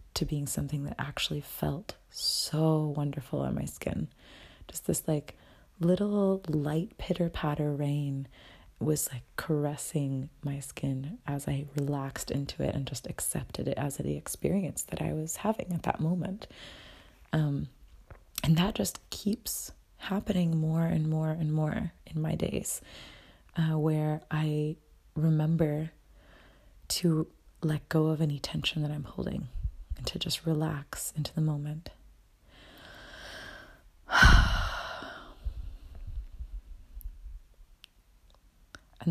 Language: English